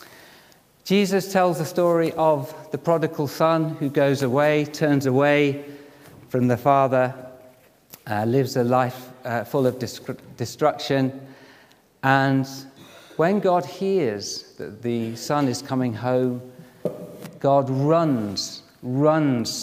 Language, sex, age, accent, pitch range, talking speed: English, male, 50-69, British, 120-145 Hz, 115 wpm